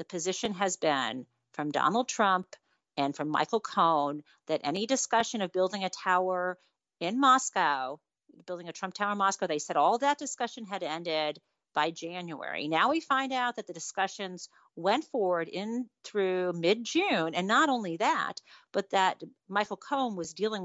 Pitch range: 170-240 Hz